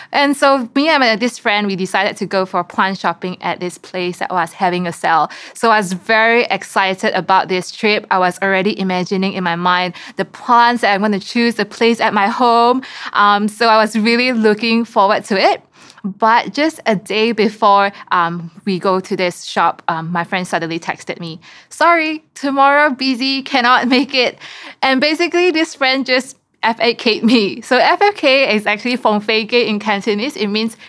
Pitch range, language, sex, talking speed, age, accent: 190-245 Hz, English, female, 190 wpm, 20-39, Malaysian